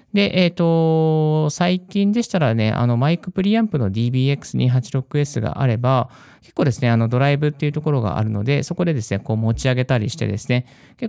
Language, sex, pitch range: Japanese, male, 115-170 Hz